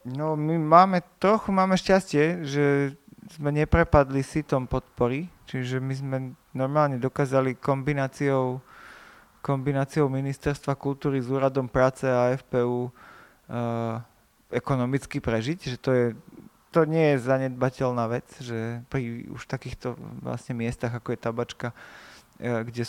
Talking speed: 125 wpm